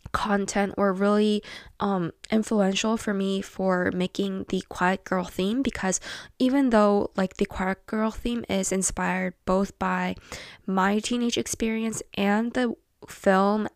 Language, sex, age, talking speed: English, female, 10-29, 135 wpm